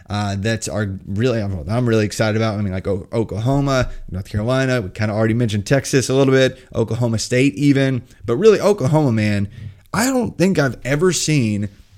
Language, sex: English, male